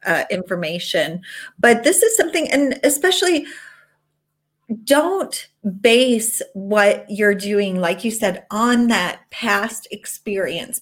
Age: 30-49